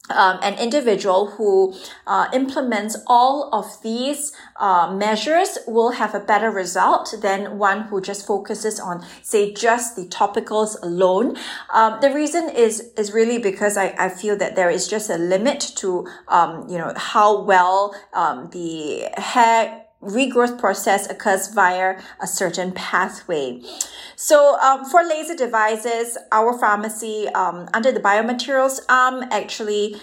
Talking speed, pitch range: 145 wpm, 195-255 Hz